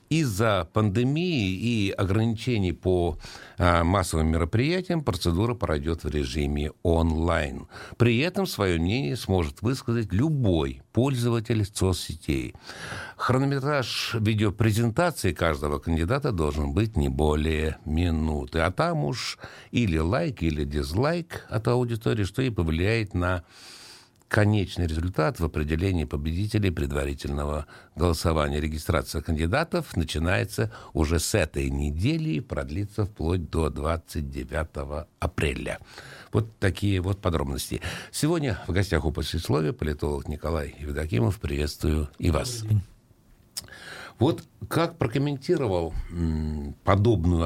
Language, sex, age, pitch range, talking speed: Russian, male, 60-79, 80-115 Hz, 105 wpm